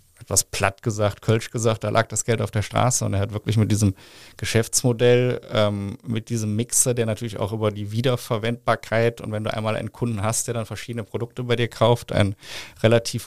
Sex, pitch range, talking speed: male, 105-120 Hz, 205 wpm